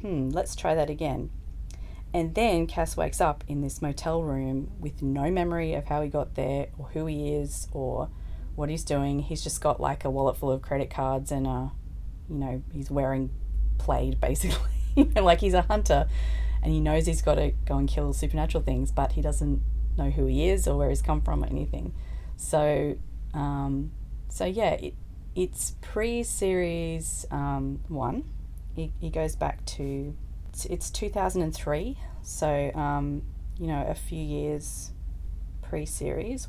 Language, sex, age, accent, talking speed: English, female, 30-49, Australian, 160 wpm